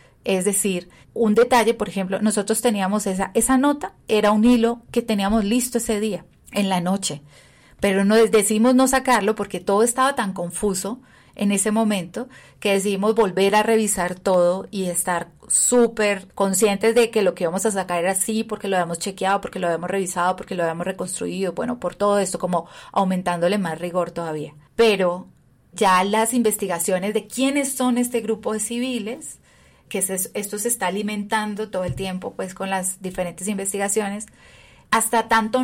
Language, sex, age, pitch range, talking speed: Spanish, female, 30-49, 180-220 Hz, 170 wpm